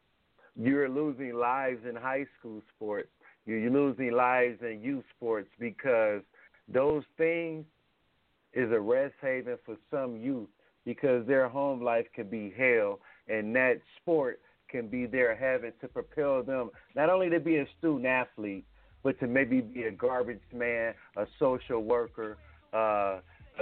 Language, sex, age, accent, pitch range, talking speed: English, male, 50-69, American, 110-150 Hz, 145 wpm